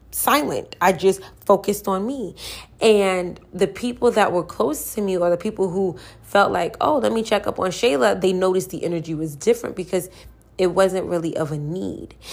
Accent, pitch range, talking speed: American, 170-210 Hz, 195 wpm